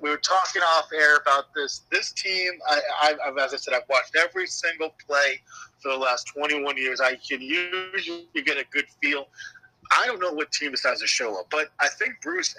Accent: American